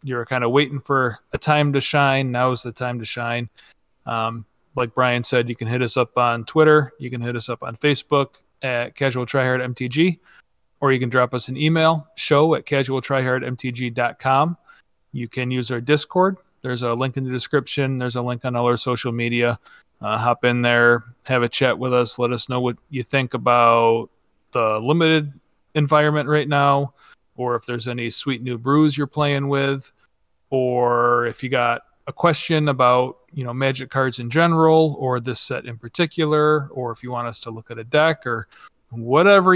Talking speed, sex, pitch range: 190 wpm, male, 120-140 Hz